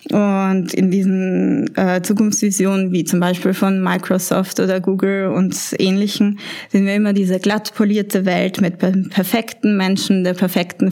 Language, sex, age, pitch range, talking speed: German, female, 20-39, 185-205 Hz, 145 wpm